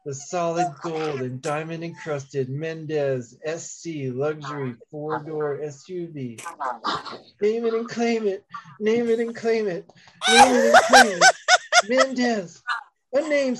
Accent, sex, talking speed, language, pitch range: American, male, 125 wpm, English, 155-210 Hz